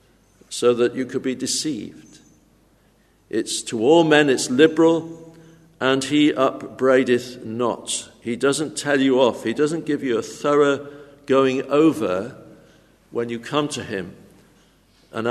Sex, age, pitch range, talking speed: male, 60-79, 120-150 Hz, 135 wpm